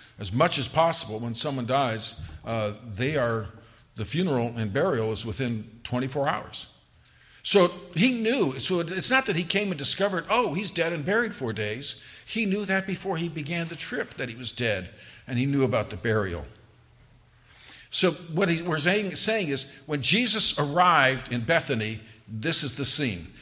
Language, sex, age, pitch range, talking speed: English, male, 50-69, 120-170 Hz, 175 wpm